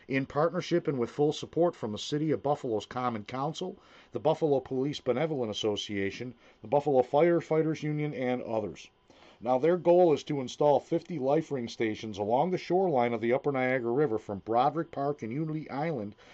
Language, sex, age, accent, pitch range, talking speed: English, male, 40-59, American, 115-150 Hz, 175 wpm